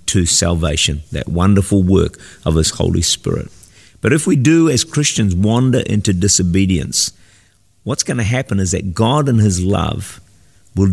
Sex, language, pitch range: male, English, 95-110 Hz